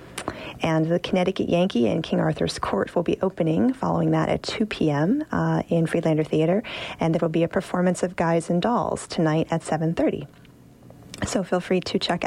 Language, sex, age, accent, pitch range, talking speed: English, female, 30-49, American, 160-185 Hz, 180 wpm